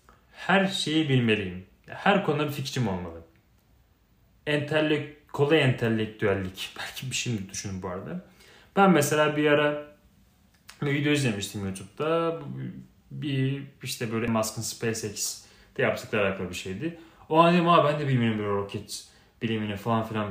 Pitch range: 105-150 Hz